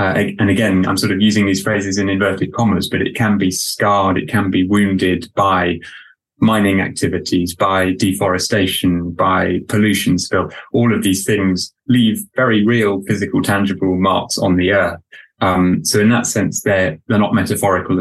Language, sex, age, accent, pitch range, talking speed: English, male, 20-39, British, 95-105 Hz, 170 wpm